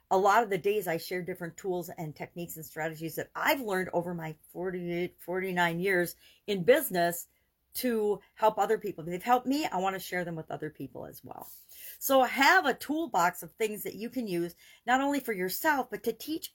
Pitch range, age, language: 165-210 Hz, 50-69, English